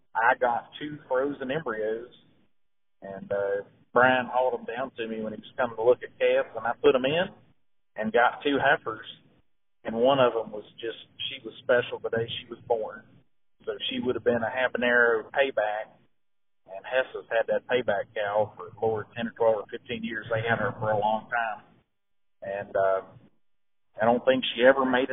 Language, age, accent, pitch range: English, 40-59, American, 110-145 Hz